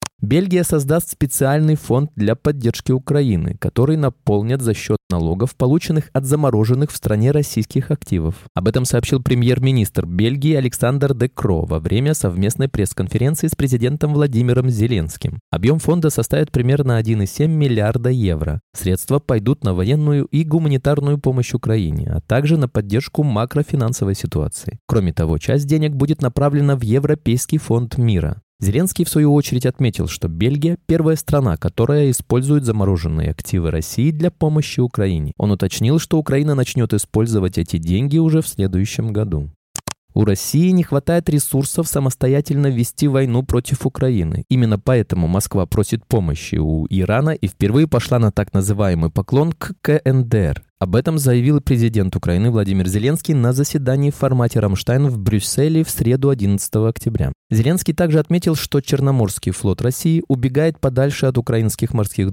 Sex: male